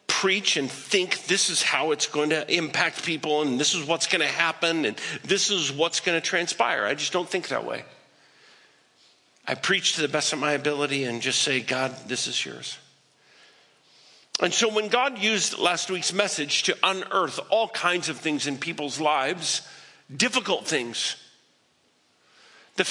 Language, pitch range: English, 140-195 Hz